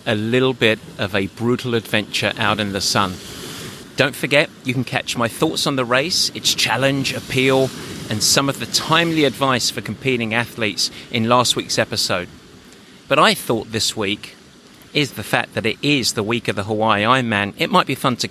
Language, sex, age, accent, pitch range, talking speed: English, male, 30-49, British, 110-140 Hz, 195 wpm